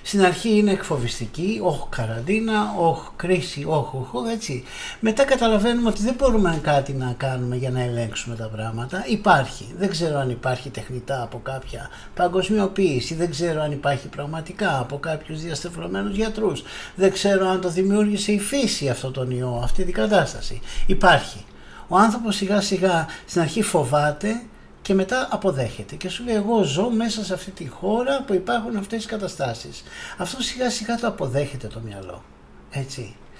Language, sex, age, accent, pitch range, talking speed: Greek, male, 60-79, native, 130-210 Hz, 160 wpm